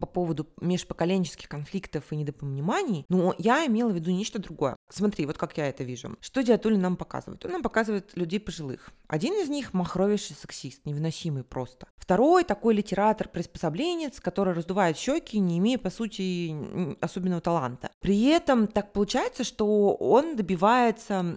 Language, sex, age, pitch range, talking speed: Russian, female, 30-49, 175-225 Hz, 155 wpm